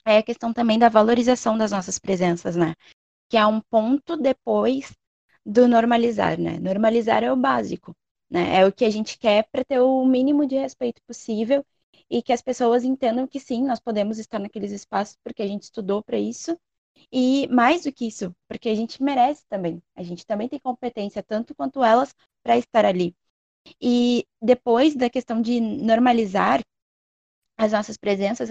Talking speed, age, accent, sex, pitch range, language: 175 wpm, 20-39, Brazilian, female, 210-245 Hz, Portuguese